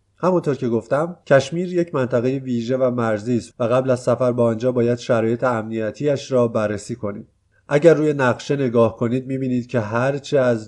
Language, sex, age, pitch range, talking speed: Persian, male, 30-49, 115-130 Hz, 180 wpm